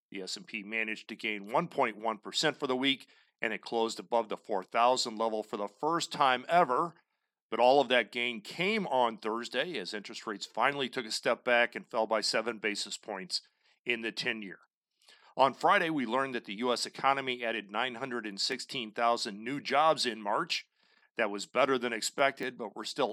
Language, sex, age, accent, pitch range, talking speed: English, male, 40-59, American, 110-130 Hz, 175 wpm